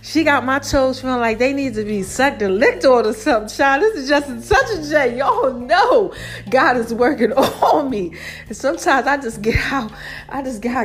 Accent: American